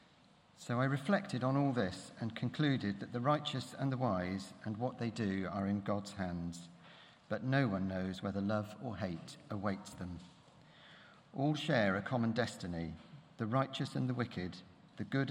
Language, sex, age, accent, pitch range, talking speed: English, male, 50-69, British, 95-125 Hz, 175 wpm